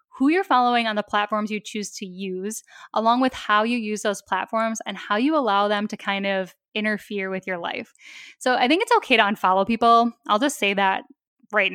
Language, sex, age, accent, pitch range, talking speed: English, female, 10-29, American, 200-245 Hz, 215 wpm